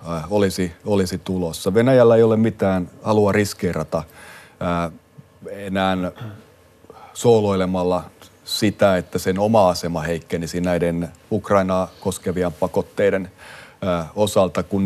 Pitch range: 90-100 Hz